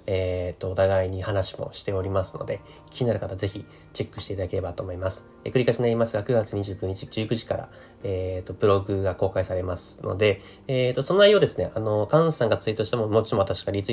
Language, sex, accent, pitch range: Japanese, male, native, 95-115 Hz